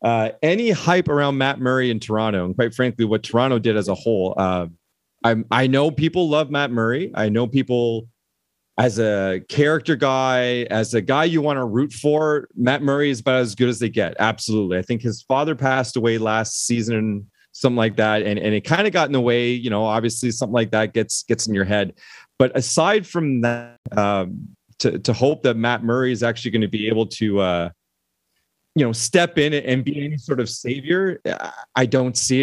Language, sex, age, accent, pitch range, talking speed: English, male, 30-49, American, 110-135 Hz, 210 wpm